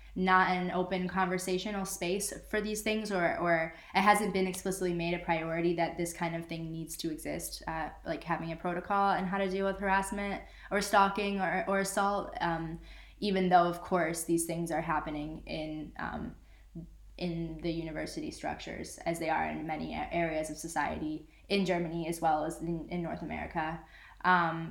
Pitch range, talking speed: 165-195 Hz, 180 wpm